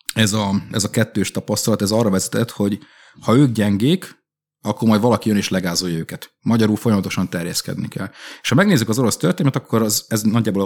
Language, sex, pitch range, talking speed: Hungarian, male, 95-115 Hz, 190 wpm